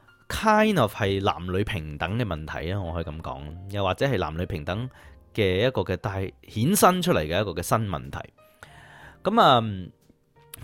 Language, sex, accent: Chinese, male, native